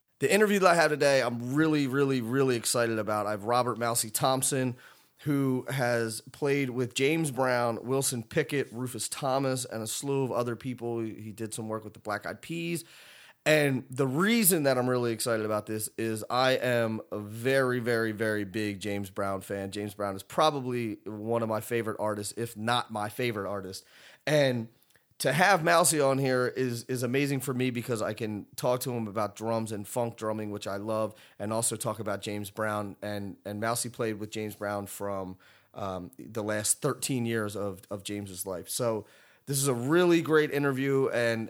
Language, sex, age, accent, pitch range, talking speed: English, male, 30-49, American, 105-130 Hz, 190 wpm